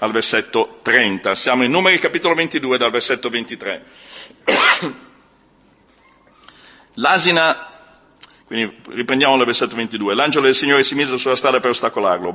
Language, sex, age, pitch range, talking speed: Italian, male, 50-69, 120-150 Hz, 115 wpm